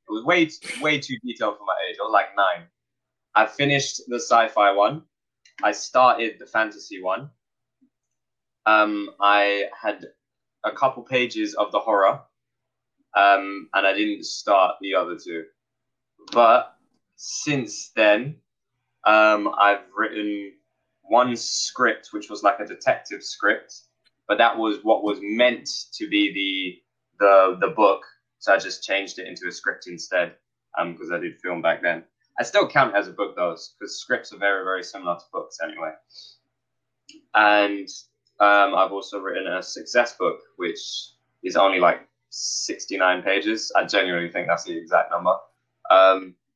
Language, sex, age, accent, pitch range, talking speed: English, male, 20-39, British, 100-135 Hz, 155 wpm